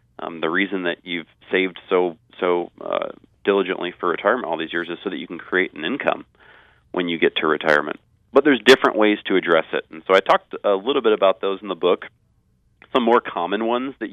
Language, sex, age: English, male, 30-49